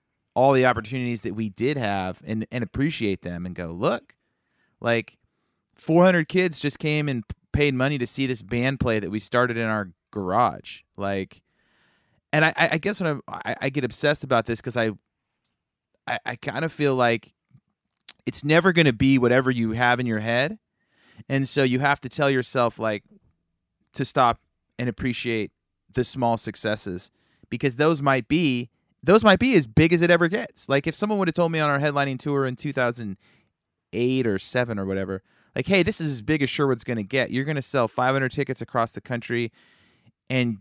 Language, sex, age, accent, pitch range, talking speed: English, male, 30-49, American, 115-155 Hz, 195 wpm